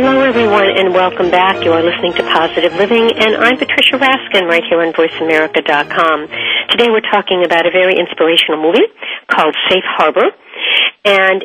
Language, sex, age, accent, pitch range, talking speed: English, female, 50-69, American, 170-230 Hz, 160 wpm